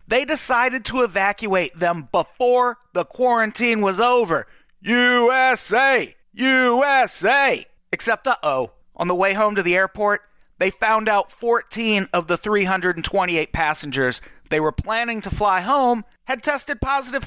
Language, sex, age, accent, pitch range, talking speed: English, male, 40-59, American, 155-230 Hz, 135 wpm